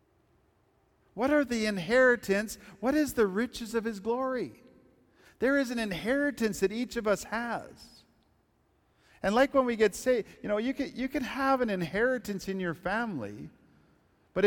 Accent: American